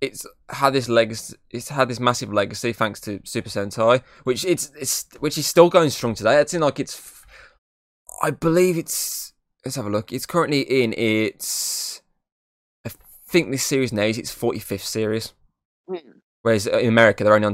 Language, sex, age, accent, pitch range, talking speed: English, male, 20-39, British, 105-130 Hz, 180 wpm